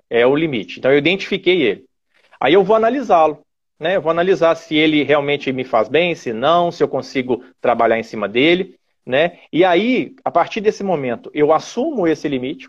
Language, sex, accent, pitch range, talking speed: Portuguese, male, Brazilian, 135-190 Hz, 195 wpm